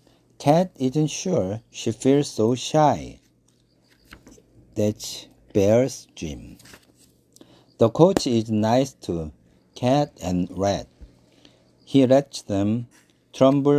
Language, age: Korean, 50-69